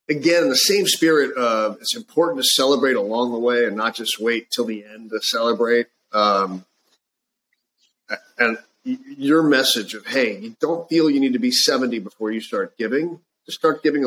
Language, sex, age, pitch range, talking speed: English, male, 40-59, 115-155 Hz, 185 wpm